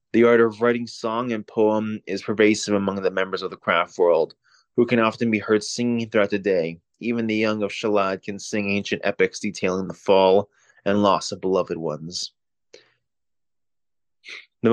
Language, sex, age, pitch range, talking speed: English, male, 20-39, 105-115 Hz, 175 wpm